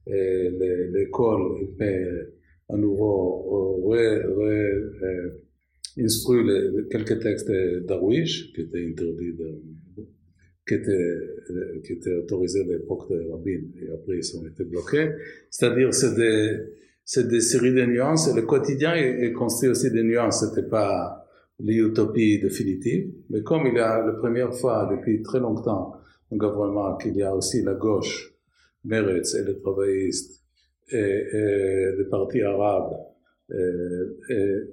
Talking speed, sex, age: 135 wpm, male, 50-69